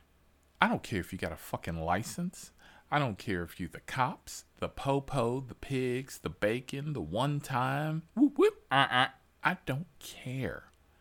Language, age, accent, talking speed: English, 40-59, American, 170 wpm